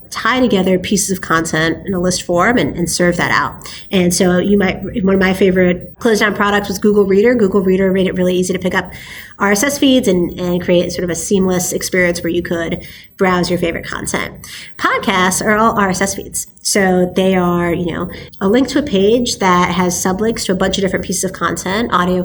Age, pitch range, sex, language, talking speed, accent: 30-49, 180-210 Hz, female, English, 220 wpm, American